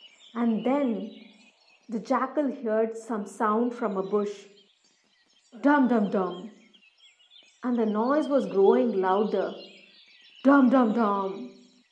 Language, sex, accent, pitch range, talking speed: English, female, Indian, 215-315 Hz, 110 wpm